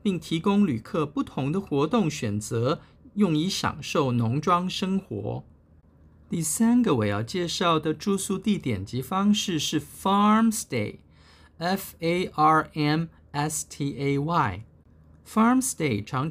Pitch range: 125-195 Hz